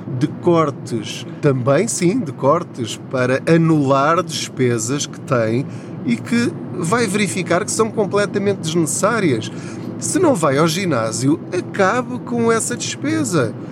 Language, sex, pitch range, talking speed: Portuguese, male, 130-175 Hz, 120 wpm